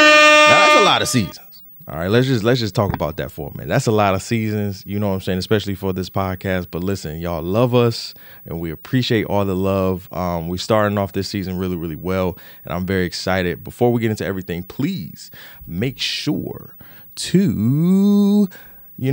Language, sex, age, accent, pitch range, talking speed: English, male, 20-39, American, 90-120 Hz, 200 wpm